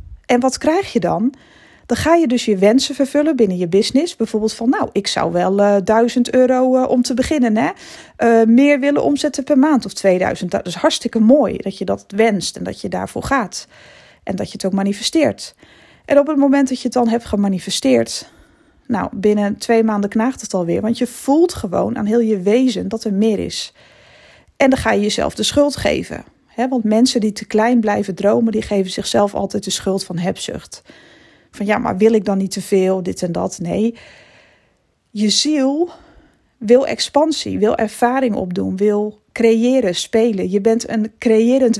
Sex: female